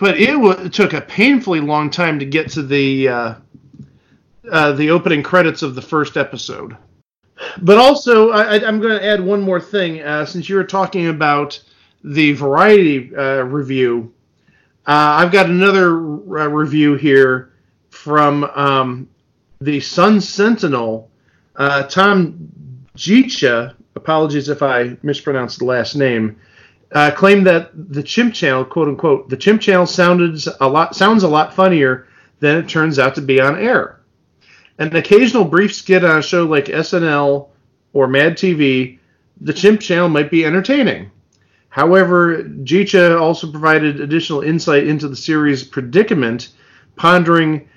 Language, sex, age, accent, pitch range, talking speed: English, male, 40-59, American, 135-180 Hz, 150 wpm